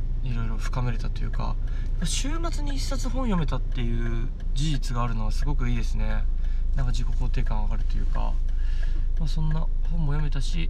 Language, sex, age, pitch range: Japanese, male, 20-39, 80-130 Hz